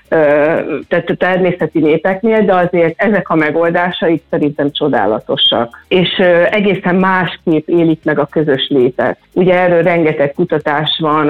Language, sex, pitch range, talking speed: Hungarian, female, 155-185 Hz, 125 wpm